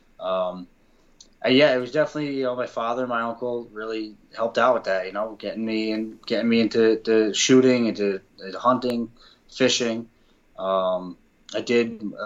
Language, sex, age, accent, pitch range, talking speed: English, male, 20-39, American, 105-120 Hz, 170 wpm